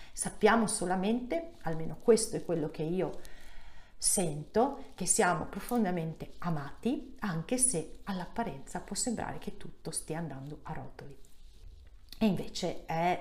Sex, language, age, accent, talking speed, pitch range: female, Italian, 40-59, native, 125 wpm, 160-190 Hz